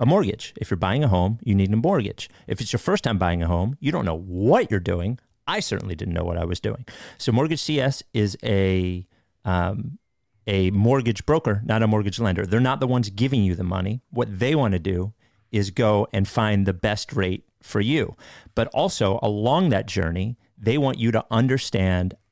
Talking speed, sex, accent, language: 210 wpm, male, American, English